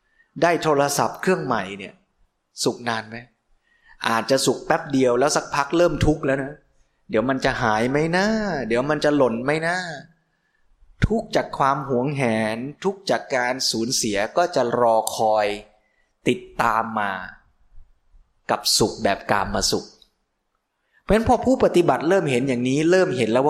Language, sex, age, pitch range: Thai, male, 20-39, 125-180 Hz